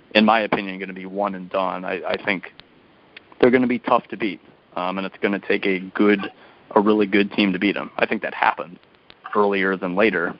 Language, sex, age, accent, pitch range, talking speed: English, male, 30-49, American, 95-105 Hz, 235 wpm